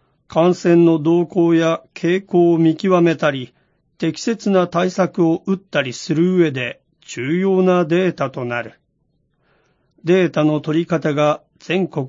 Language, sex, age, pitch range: Japanese, male, 40-59, 150-180 Hz